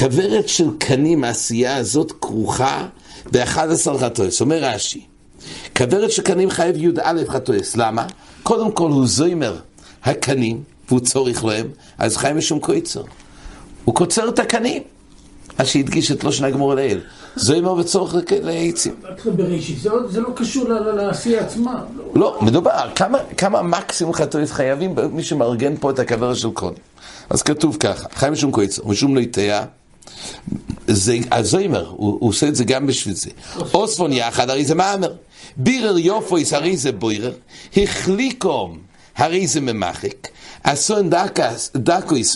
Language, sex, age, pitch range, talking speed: English, male, 60-79, 120-175 Hz, 135 wpm